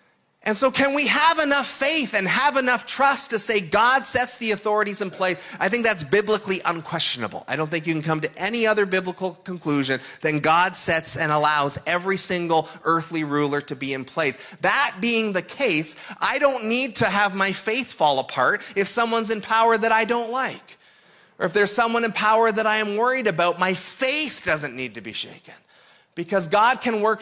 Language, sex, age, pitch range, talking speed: English, male, 30-49, 185-250 Hz, 200 wpm